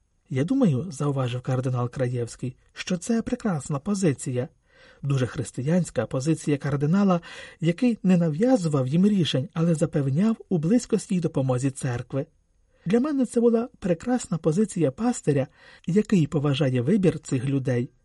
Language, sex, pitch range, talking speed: Ukrainian, male, 135-190 Hz, 125 wpm